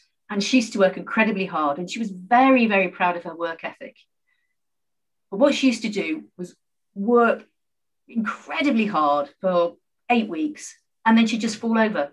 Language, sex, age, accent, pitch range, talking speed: English, female, 40-59, British, 185-240 Hz, 180 wpm